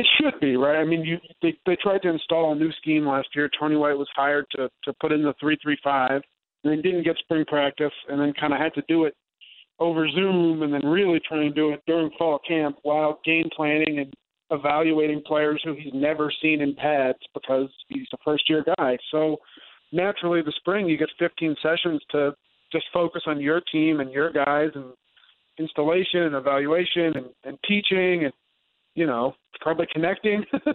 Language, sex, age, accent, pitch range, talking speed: English, male, 40-59, American, 150-170 Hz, 195 wpm